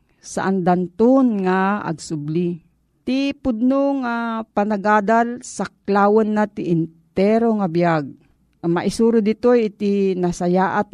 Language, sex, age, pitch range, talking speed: Filipino, female, 40-59, 180-235 Hz, 100 wpm